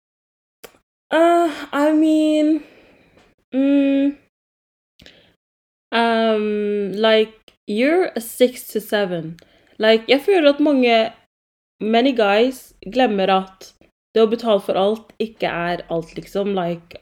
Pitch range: 190-240 Hz